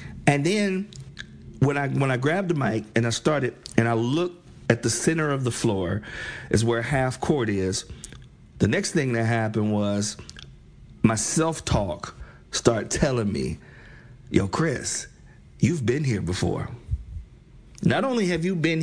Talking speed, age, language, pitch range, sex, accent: 155 wpm, 50-69, English, 115-160 Hz, male, American